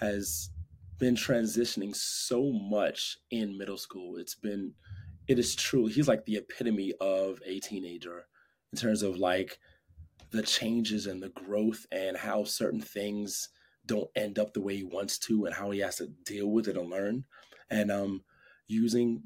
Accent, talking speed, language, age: American, 170 wpm, English, 20-39